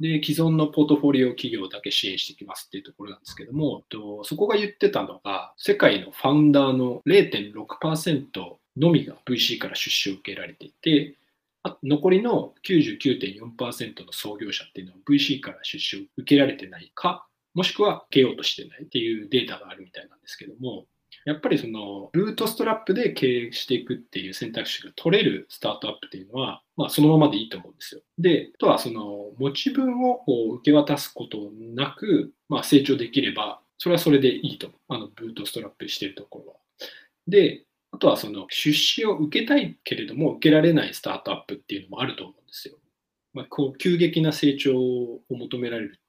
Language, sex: Japanese, male